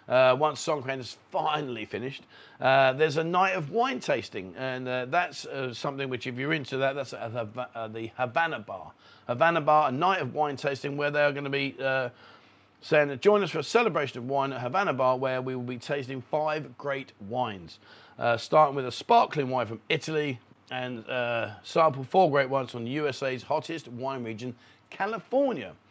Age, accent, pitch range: 40-59, British, 120-150 Hz